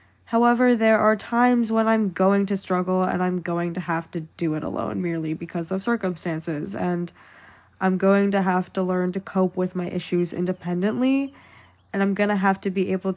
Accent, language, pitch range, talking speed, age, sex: American, English, 175-200 Hz, 195 wpm, 10-29, female